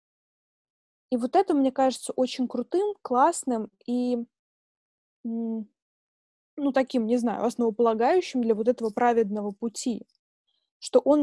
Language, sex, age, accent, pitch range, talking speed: Russian, female, 20-39, native, 225-265 Hz, 110 wpm